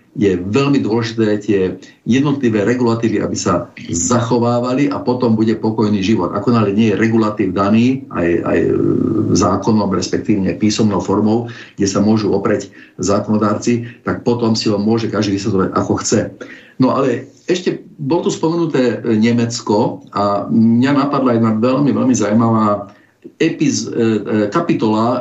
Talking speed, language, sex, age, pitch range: 135 wpm, Slovak, male, 50-69, 105-125 Hz